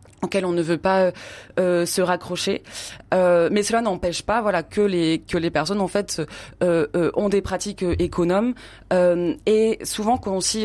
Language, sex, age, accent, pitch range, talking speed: French, female, 20-39, French, 175-195 Hz, 185 wpm